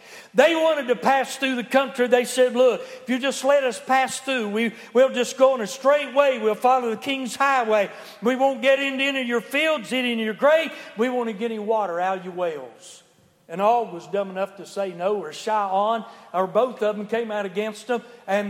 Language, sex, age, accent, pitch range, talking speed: English, male, 60-79, American, 200-255 Hz, 230 wpm